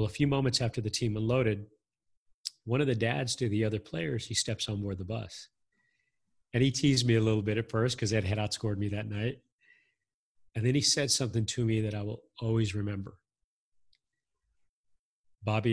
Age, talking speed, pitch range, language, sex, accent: 40-59, 195 wpm, 105-125 Hz, English, male, American